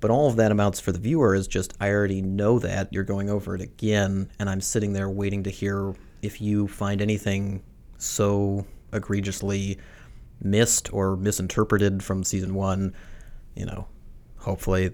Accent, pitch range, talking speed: American, 95-110 Hz, 165 wpm